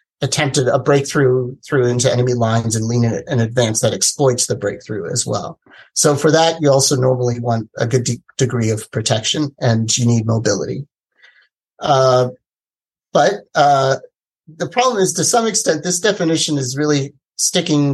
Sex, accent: male, American